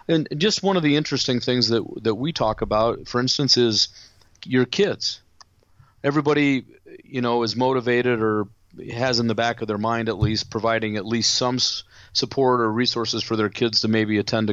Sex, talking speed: male, 190 wpm